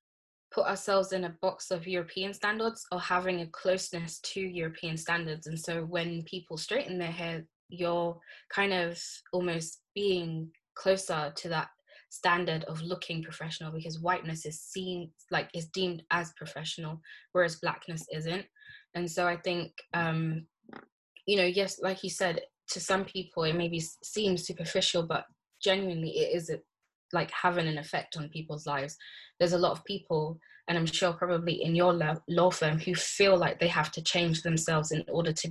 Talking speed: 170 wpm